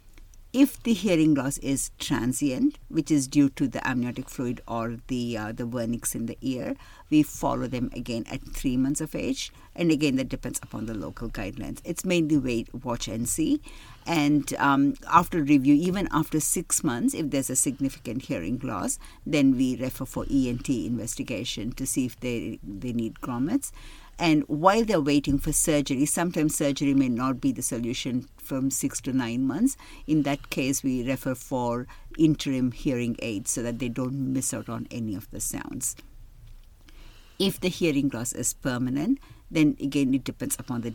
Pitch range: 120-150 Hz